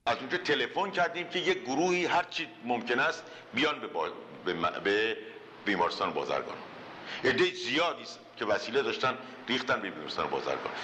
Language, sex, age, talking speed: Persian, male, 50-69, 155 wpm